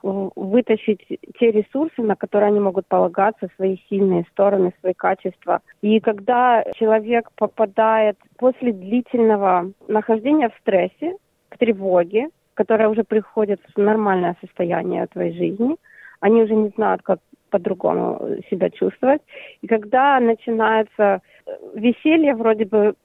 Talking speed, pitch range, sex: 120 wpm, 195-230 Hz, female